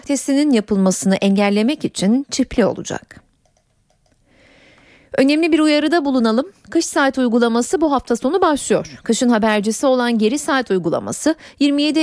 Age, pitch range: 30-49, 220-280 Hz